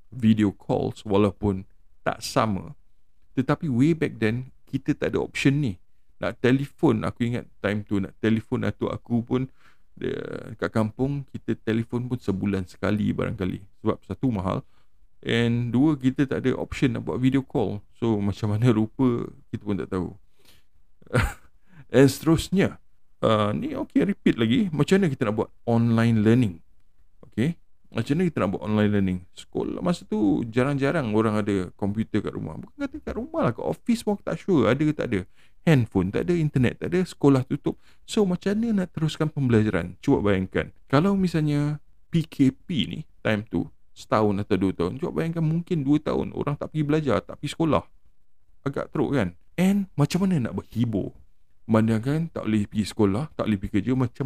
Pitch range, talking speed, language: 100-145 Hz, 170 wpm, Malay